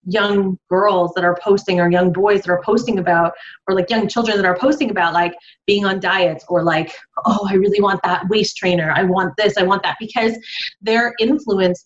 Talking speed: 215 wpm